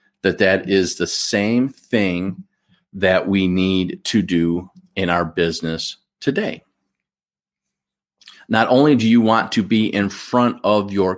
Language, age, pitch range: English, 40-59, 100-135 Hz